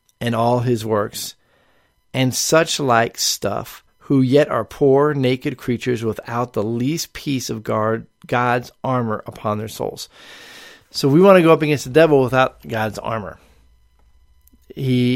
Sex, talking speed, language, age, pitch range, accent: male, 150 wpm, English, 40-59, 110-130 Hz, American